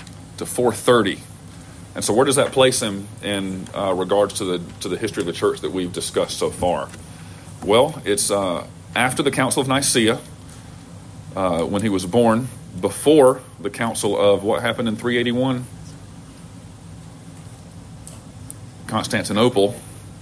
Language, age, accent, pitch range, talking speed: English, 40-59, American, 100-120 Hz, 140 wpm